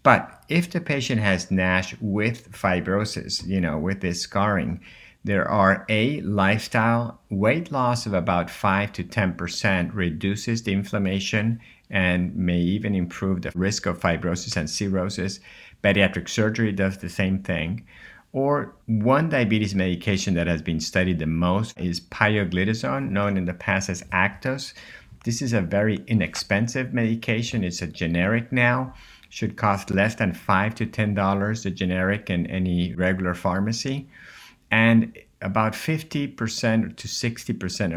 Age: 50-69